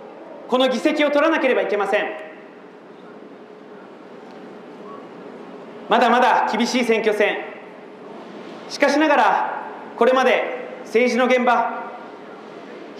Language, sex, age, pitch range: Japanese, male, 40-59, 220-265 Hz